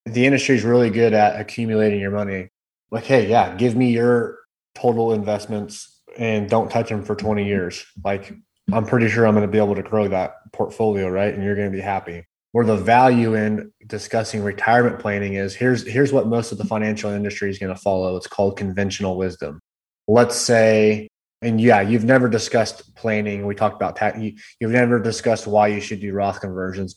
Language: English